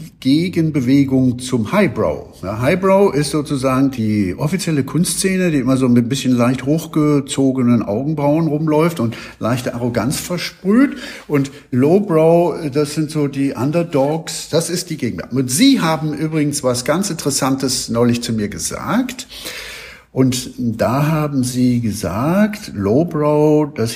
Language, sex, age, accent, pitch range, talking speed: German, male, 60-79, German, 125-160 Hz, 135 wpm